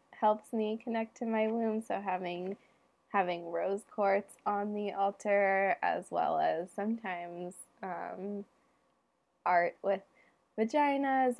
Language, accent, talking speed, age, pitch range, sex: English, American, 115 wpm, 20-39, 185-225 Hz, female